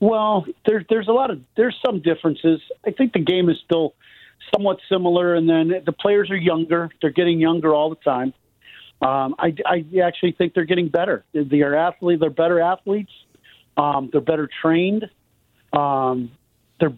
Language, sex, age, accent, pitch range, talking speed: English, male, 50-69, American, 145-180 Hz, 175 wpm